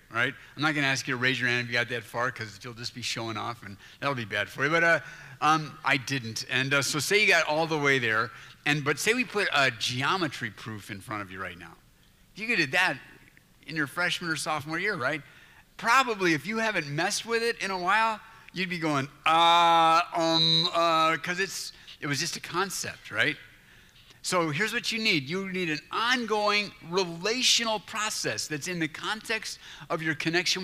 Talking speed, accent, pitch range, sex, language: 215 wpm, American, 135-180 Hz, male, English